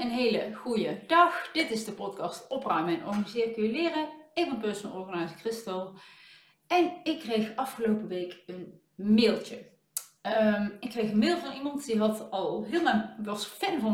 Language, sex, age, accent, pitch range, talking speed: Dutch, female, 40-59, Dutch, 205-275 Hz, 160 wpm